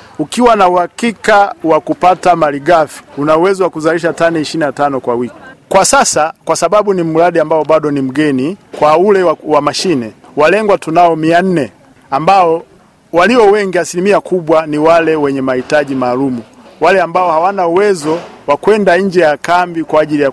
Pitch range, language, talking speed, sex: 145-185 Hz, Swahili, 160 wpm, male